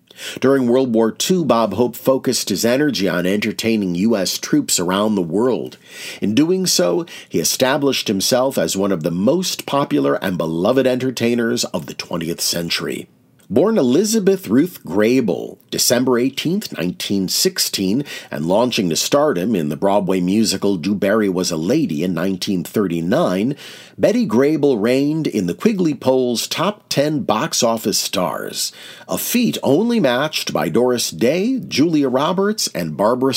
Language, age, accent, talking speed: English, 40-59, American, 140 wpm